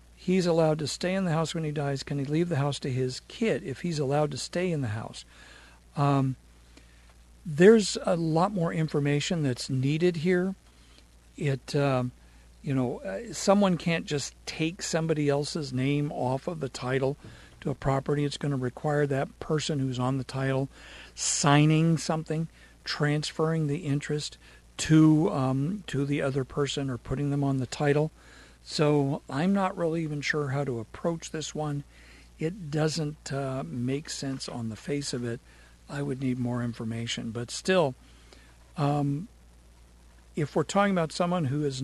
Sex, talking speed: male, 165 wpm